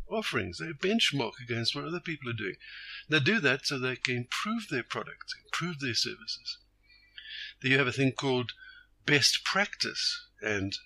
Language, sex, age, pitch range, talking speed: English, male, 60-79, 110-145 Hz, 160 wpm